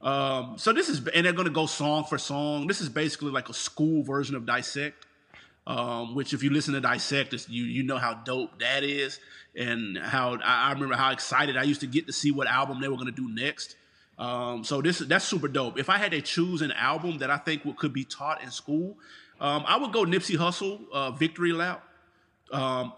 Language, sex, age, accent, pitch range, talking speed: English, male, 30-49, American, 140-165 Hz, 225 wpm